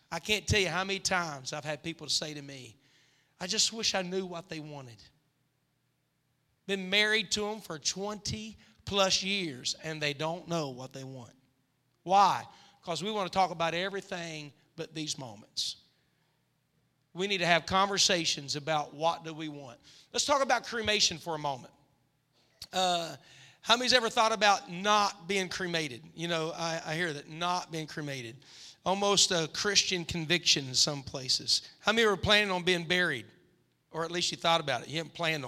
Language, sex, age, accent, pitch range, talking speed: English, male, 40-59, American, 150-200 Hz, 180 wpm